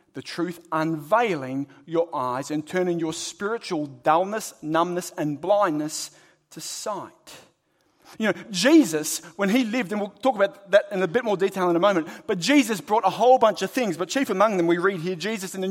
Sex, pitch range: male, 155-205 Hz